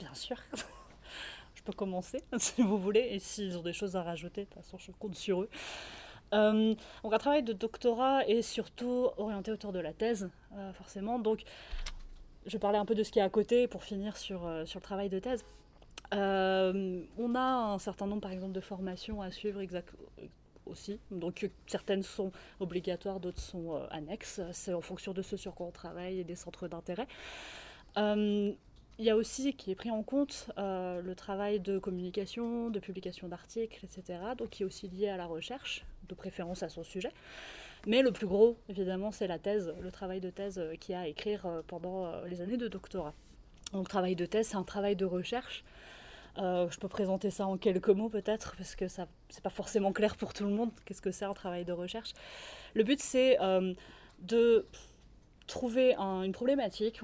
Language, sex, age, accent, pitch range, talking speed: French, female, 30-49, French, 185-215 Hz, 200 wpm